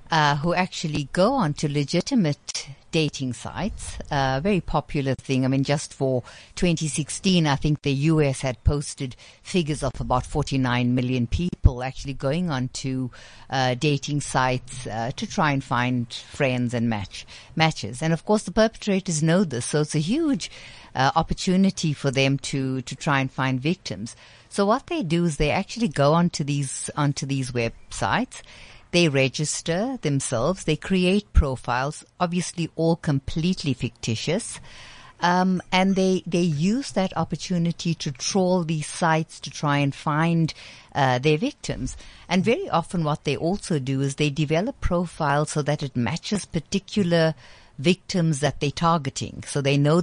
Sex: female